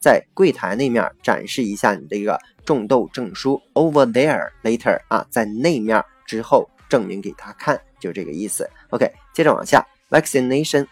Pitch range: 115-140 Hz